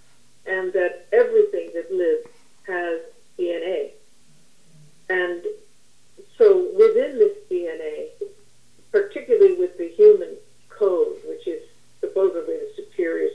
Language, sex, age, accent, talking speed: English, female, 50-69, American, 100 wpm